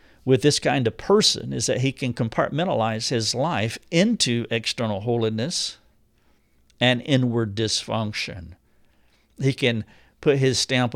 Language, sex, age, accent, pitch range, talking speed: English, male, 50-69, American, 110-135 Hz, 125 wpm